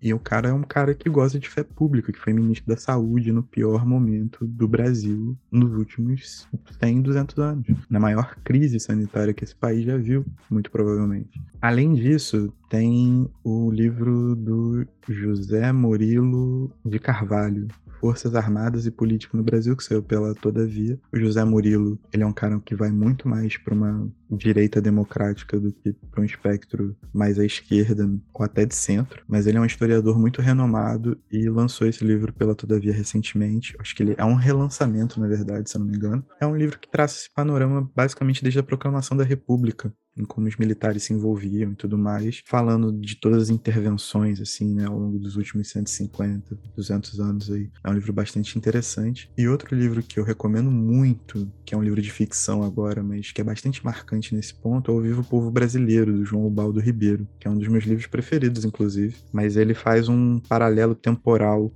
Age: 20-39